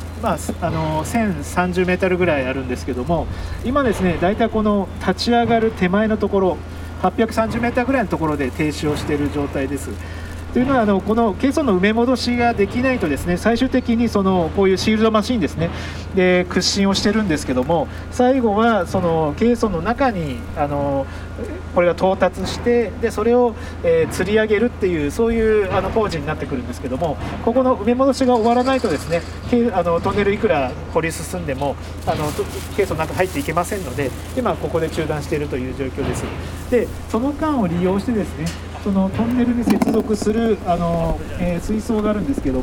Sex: male